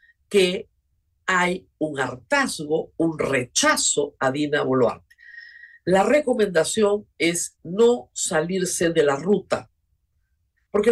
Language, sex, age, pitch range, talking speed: Spanish, female, 50-69, 145-215 Hz, 100 wpm